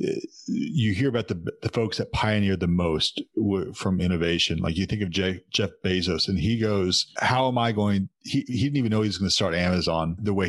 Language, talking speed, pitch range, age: English, 225 wpm, 95-115 Hz, 30-49